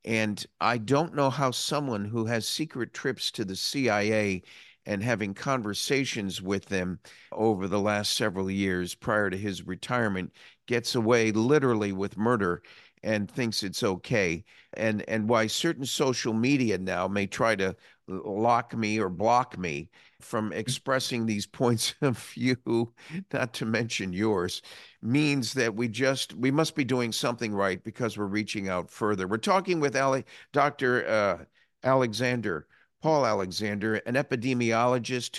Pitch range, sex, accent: 105-130 Hz, male, American